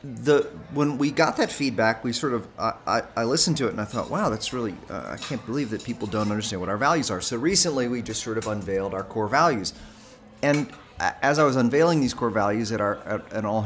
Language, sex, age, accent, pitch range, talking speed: English, male, 30-49, American, 105-120 Hz, 240 wpm